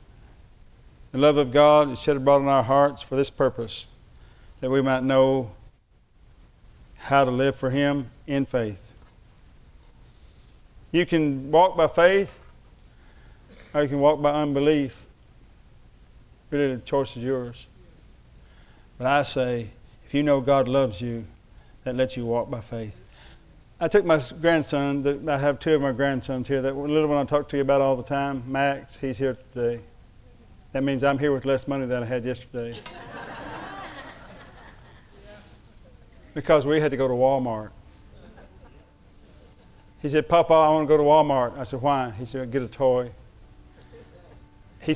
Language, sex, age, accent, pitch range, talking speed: English, male, 50-69, American, 110-145 Hz, 160 wpm